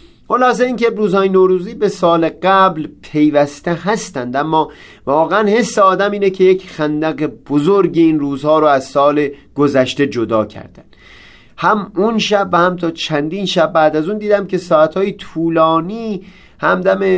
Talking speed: 145 wpm